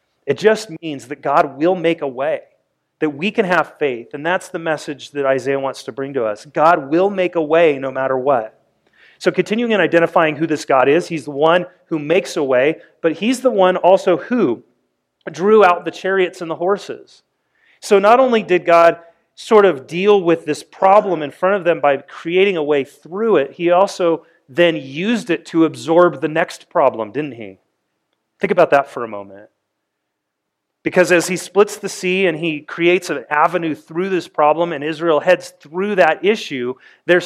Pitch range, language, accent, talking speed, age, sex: 145-185 Hz, English, American, 195 wpm, 30-49, male